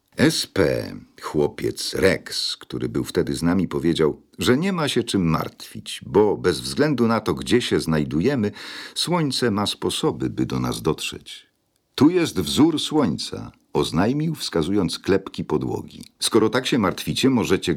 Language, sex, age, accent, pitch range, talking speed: Polish, male, 50-69, native, 75-115 Hz, 145 wpm